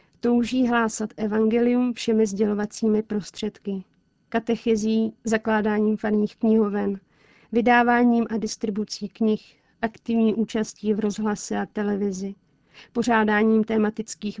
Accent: native